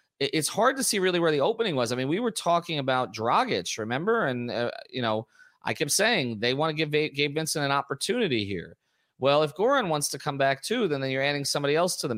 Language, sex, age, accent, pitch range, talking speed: English, male, 30-49, American, 120-160 Hz, 240 wpm